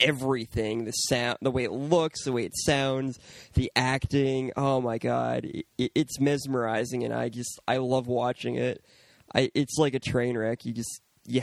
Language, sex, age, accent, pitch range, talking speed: English, male, 20-39, American, 120-140 Hz, 180 wpm